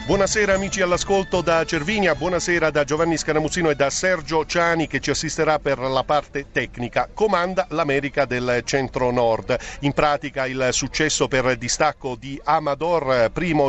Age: 50-69